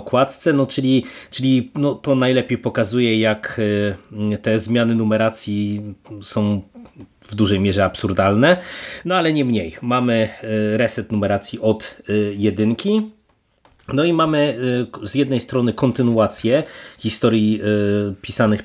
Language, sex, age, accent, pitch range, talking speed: Polish, male, 30-49, native, 105-125 Hz, 105 wpm